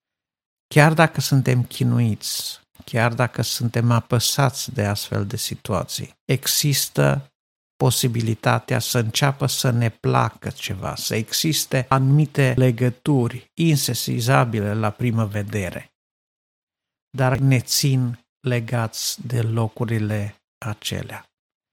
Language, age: Romanian, 50-69